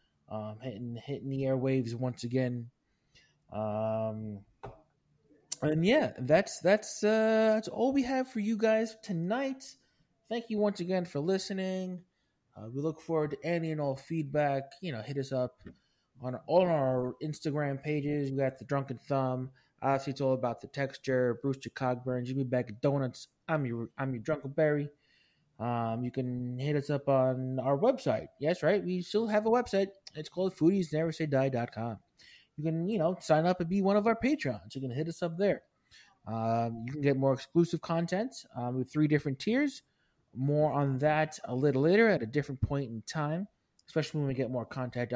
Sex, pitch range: male, 130-170 Hz